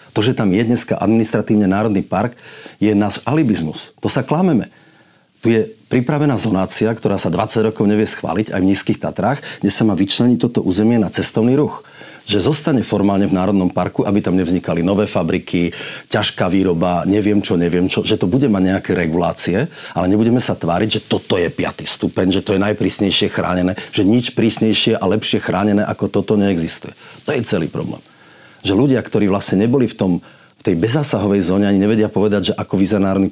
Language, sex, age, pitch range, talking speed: Slovak, male, 40-59, 95-110 Hz, 190 wpm